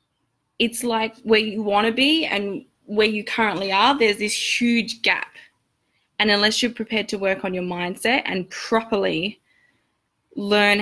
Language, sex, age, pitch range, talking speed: English, female, 10-29, 210-340 Hz, 155 wpm